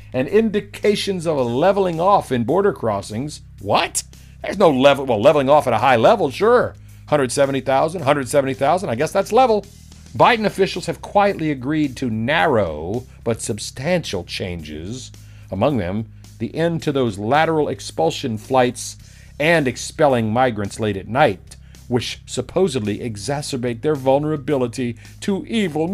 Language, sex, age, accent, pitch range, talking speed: English, male, 50-69, American, 110-170 Hz, 135 wpm